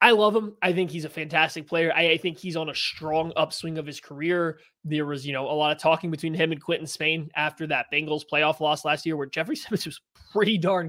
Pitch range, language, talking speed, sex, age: 150-180 Hz, English, 255 wpm, male, 20-39